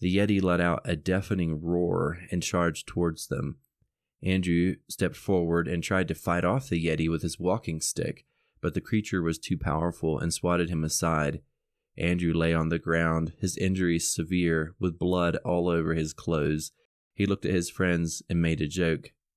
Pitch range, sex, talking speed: 85-95 Hz, male, 180 wpm